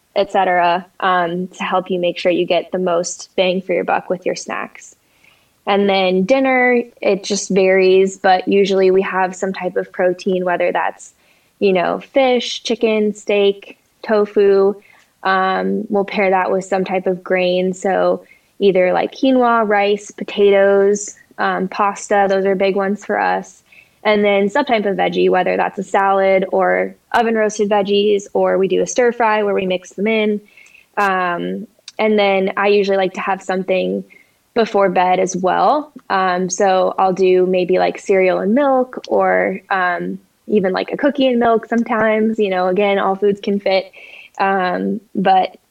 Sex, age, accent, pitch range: female, 10-29, American, 185-215 Hz